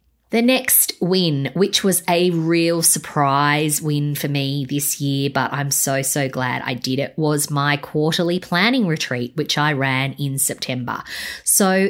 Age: 20-39